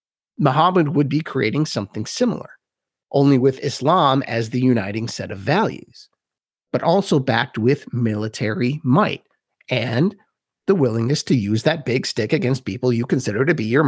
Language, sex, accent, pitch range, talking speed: English, male, American, 120-160 Hz, 155 wpm